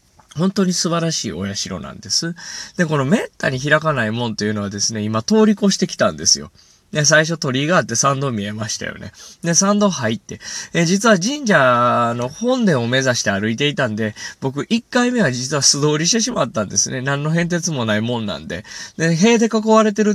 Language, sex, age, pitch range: Japanese, male, 20-39, 120-200 Hz